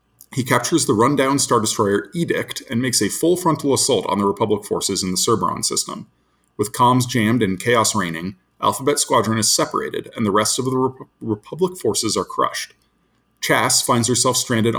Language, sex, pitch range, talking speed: English, male, 105-125 Hz, 185 wpm